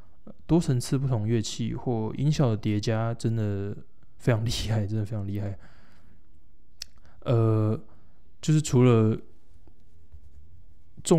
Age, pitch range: 20-39, 100-120 Hz